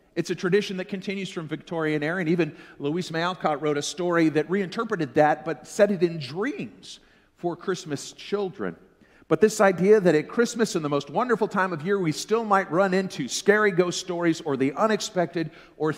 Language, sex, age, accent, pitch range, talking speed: English, male, 50-69, American, 160-220 Hz, 190 wpm